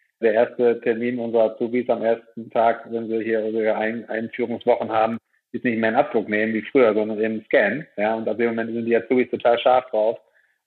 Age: 40-59